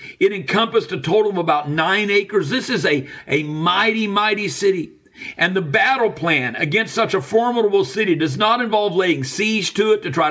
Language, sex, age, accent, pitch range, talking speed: English, male, 50-69, American, 155-210 Hz, 190 wpm